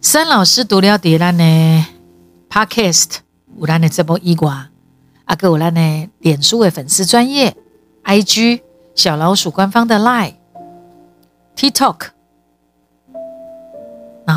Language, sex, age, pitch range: Chinese, female, 50-69, 155-230 Hz